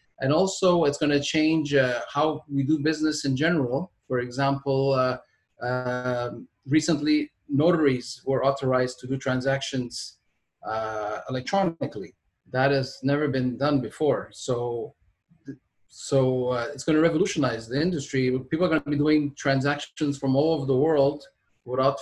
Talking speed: 145 wpm